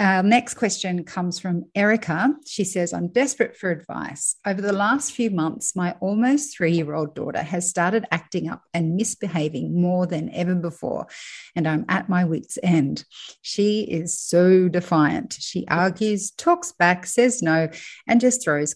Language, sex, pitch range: English, female, 165-225 Hz